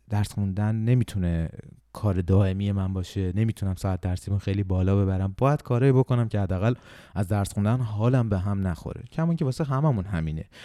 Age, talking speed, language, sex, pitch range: 30-49, 185 wpm, Persian, male, 90-110 Hz